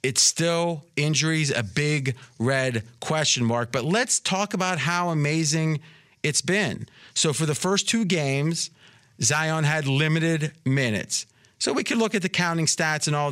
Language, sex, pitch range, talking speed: English, male, 135-170 Hz, 160 wpm